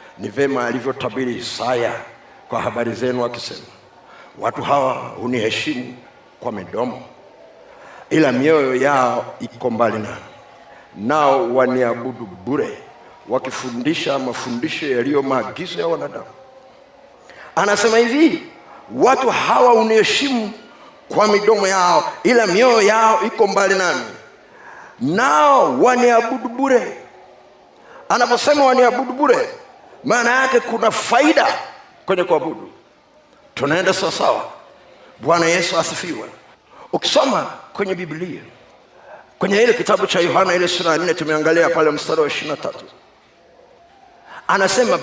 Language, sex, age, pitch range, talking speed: Swahili, male, 50-69, 150-245 Hz, 105 wpm